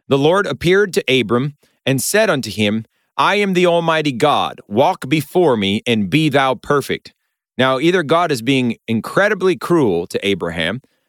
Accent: American